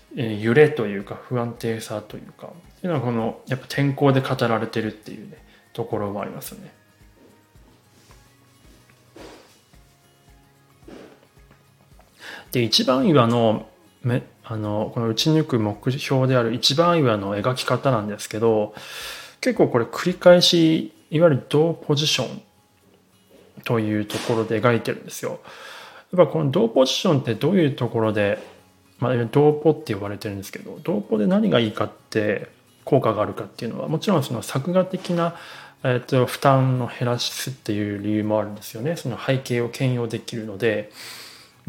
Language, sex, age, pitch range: Japanese, male, 20-39, 110-150 Hz